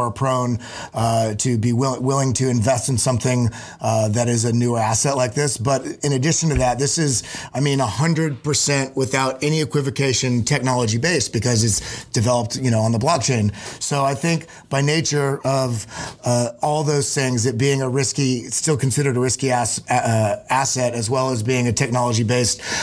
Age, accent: 30-49, American